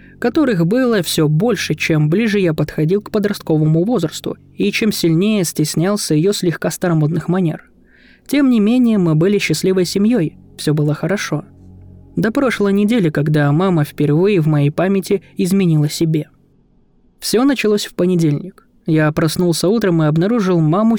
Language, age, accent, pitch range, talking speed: Russian, 20-39, native, 155-195 Hz, 145 wpm